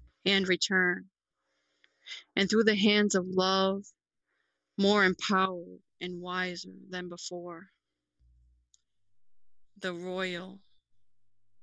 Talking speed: 85 wpm